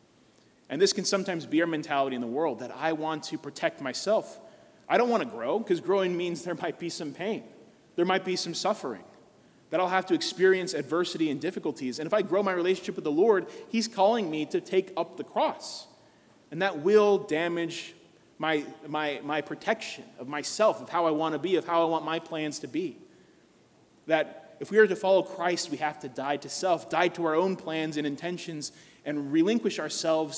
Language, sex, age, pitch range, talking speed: English, male, 30-49, 155-190 Hz, 205 wpm